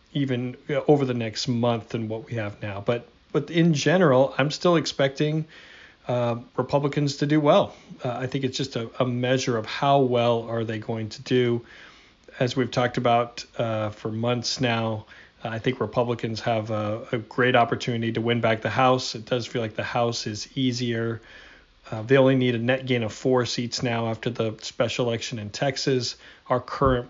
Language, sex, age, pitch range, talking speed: English, male, 40-59, 115-130 Hz, 190 wpm